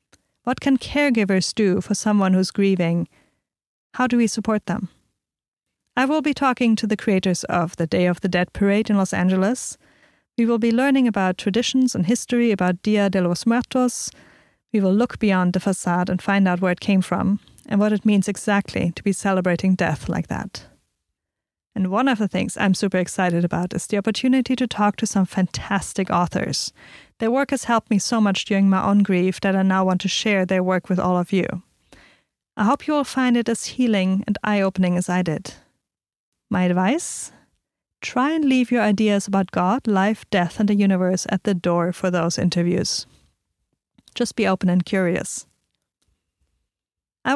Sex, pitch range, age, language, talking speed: female, 185-225 Hz, 30-49, English, 185 wpm